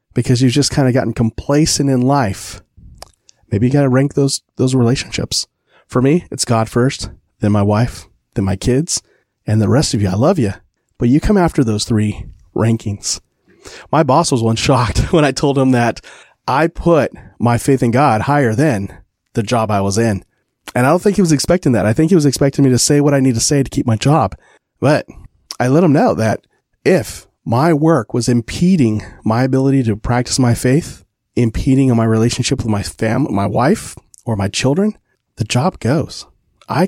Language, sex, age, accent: English, male, 30-49, American